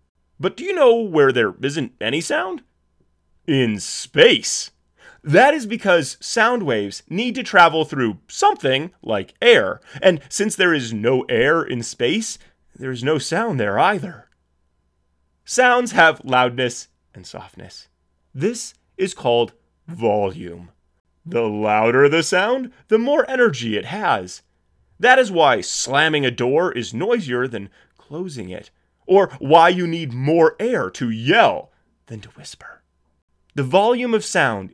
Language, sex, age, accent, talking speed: English, male, 30-49, American, 140 wpm